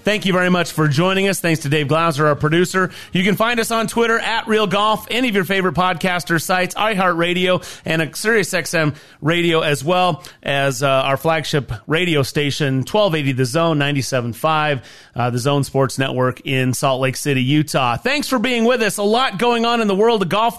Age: 30-49